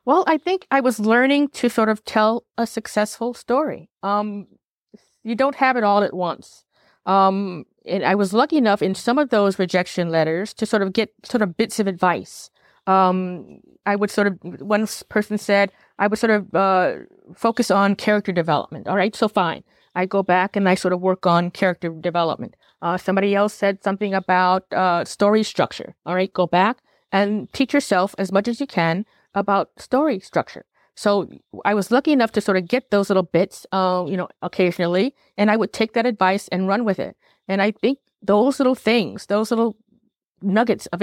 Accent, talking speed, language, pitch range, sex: American, 195 wpm, English, 185-220 Hz, female